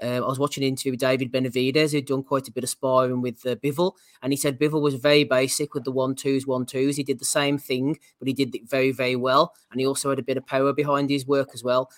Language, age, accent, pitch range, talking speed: English, 20-39, British, 130-145 Hz, 280 wpm